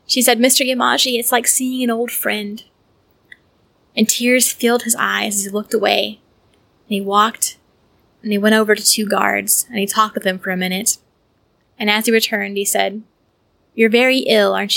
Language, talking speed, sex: English, 190 wpm, female